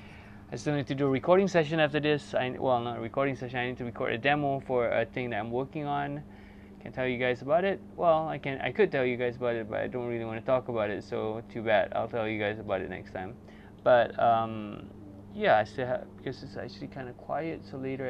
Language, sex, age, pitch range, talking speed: English, male, 20-39, 115-135 Hz, 265 wpm